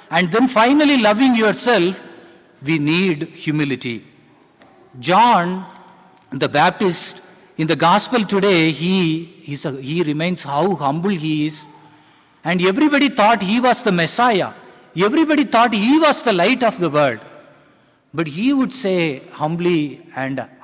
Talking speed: 135 wpm